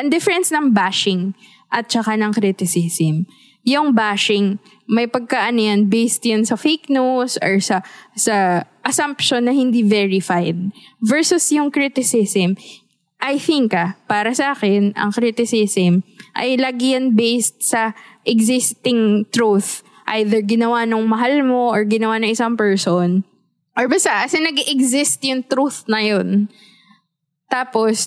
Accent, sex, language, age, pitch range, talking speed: Filipino, female, English, 20-39, 205-260 Hz, 130 wpm